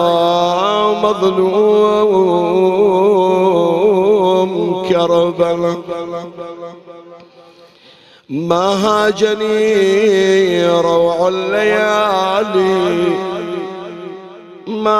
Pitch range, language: 175-210 Hz, Arabic